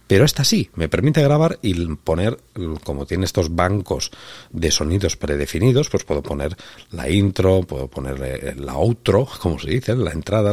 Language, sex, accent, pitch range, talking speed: Spanish, male, Spanish, 80-100 Hz, 165 wpm